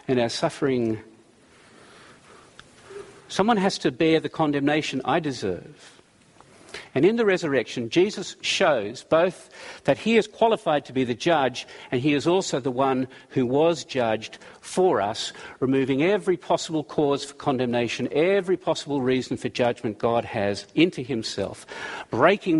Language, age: English, 50-69